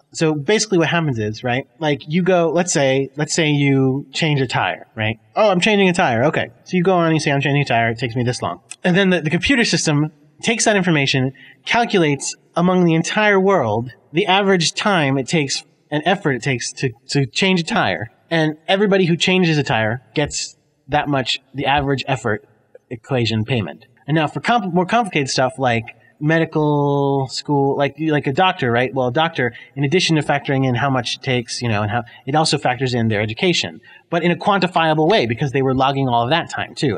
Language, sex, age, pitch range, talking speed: English, male, 30-49, 130-170 Hz, 215 wpm